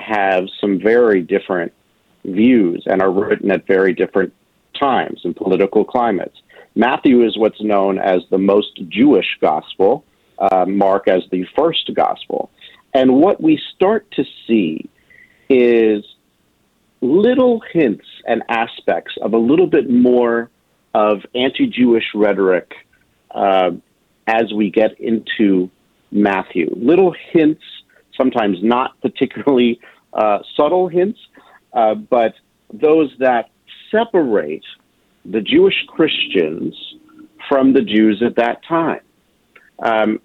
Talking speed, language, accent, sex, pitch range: 115 wpm, English, American, male, 105-155 Hz